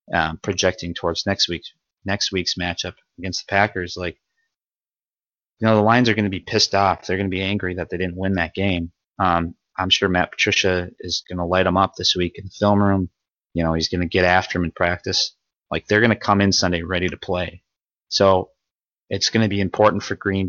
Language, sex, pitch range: English, male, 85-100 Hz